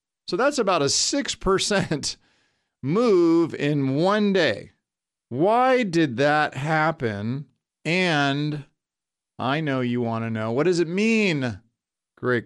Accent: American